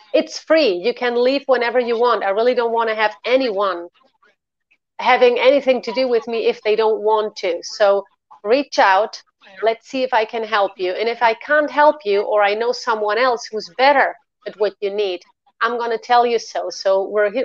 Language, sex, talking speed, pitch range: English, female, 210 wpm, 195-245 Hz